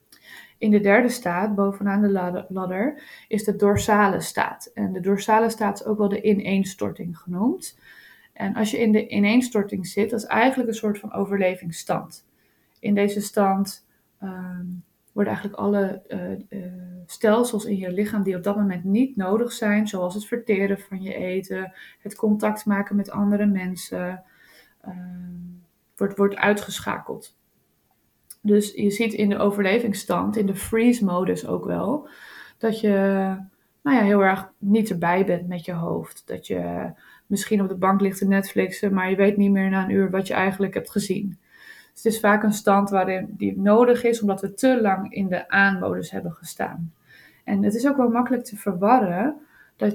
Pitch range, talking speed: 190-215 Hz, 170 wpm